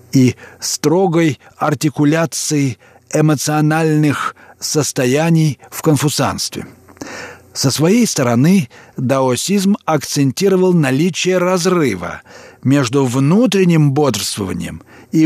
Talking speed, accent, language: 70 wpm, native, Russian